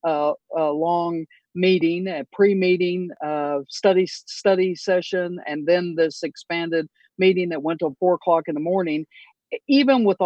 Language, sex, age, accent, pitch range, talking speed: English, female, 50-69, American, 160-190 Hz, 145 wpm